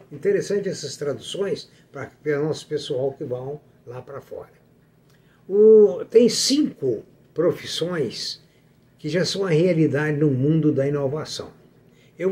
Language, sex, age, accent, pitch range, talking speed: Portuguese, male, 60-79, Brazilian, 145-210 Hz, 120 wpm